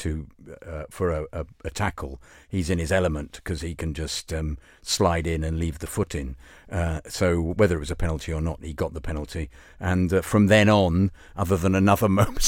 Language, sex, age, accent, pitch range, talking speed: English, male, 50-69, British, 80-100 Hz, 215 wpm